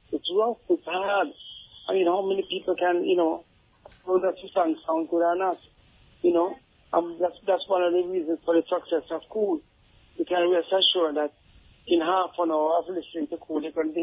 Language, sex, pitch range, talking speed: English, male, 160-180 Hz, 220 wpm